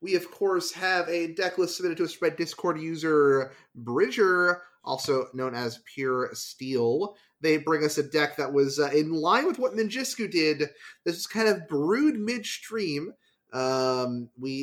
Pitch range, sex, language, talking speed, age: 140-190 Hz, male, English, 165 wpm, 30-49